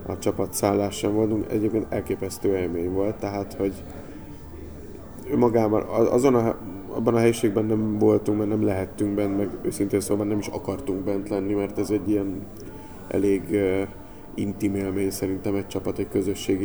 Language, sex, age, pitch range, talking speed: Hungarian, male, 20-39, 100-110 Hz, 160 wpm